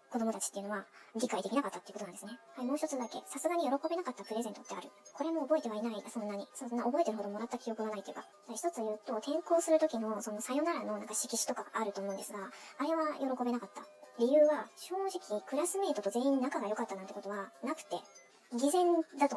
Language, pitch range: Japanese, 215-280 Hz